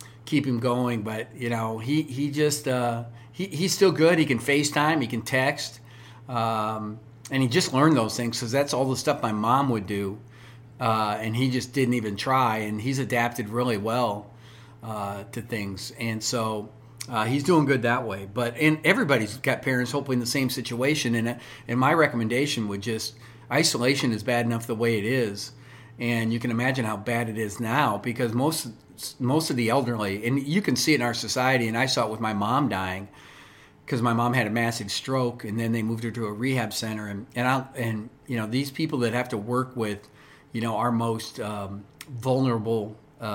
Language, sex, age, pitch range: English, male, 50-69, 110-130 Hz